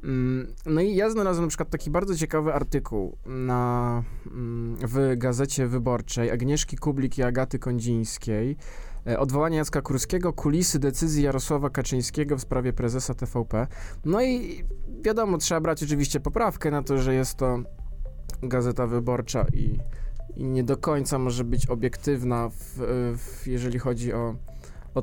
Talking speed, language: 130 wpm, Polish